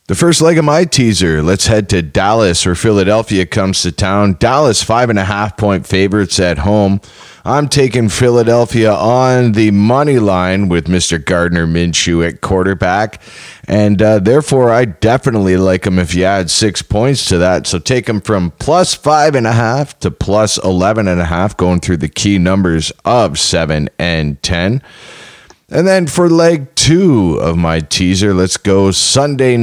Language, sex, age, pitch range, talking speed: English, male, 30-49, 90-120 Hz, 175 wpm